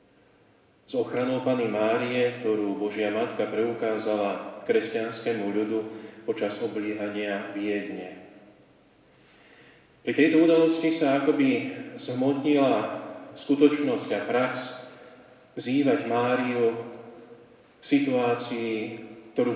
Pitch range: 110-135 Hz